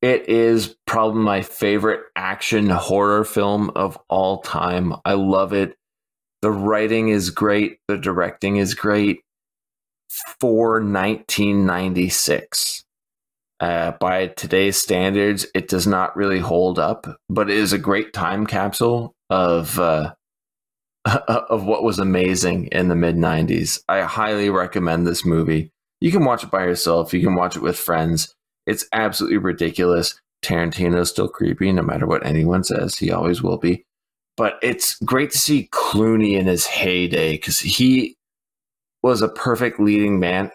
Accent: American